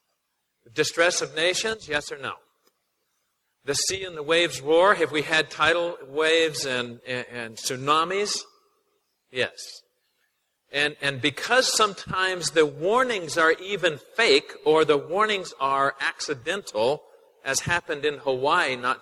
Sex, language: male, English